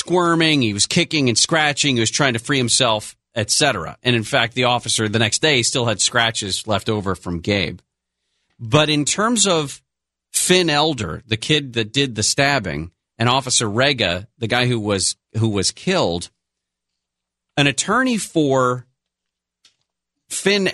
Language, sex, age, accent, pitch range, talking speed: English, male, 40-59, American, 100-150 Hz, 155 wpm